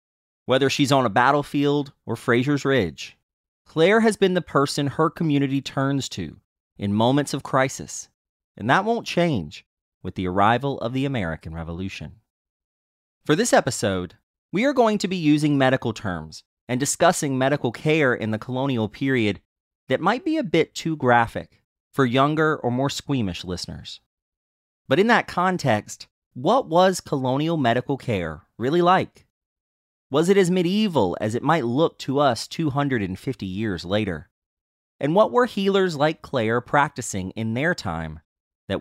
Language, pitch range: English, 90-150 Hz